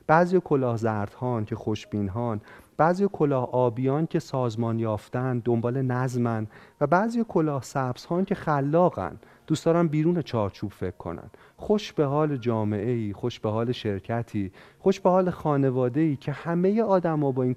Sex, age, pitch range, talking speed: male, 40-59, 120-170 Hz, 145 wpm